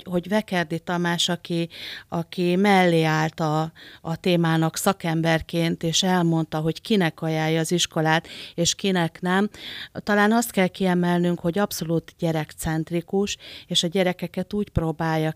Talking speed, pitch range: 125 wpm, 160-185 Hz